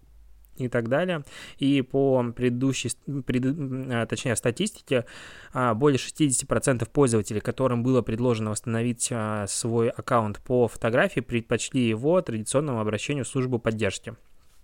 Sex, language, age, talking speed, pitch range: male, Russian, 20-39, 105 wpm, 115-135 Hz